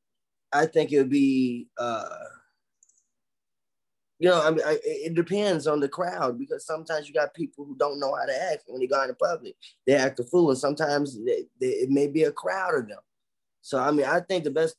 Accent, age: American, 20-39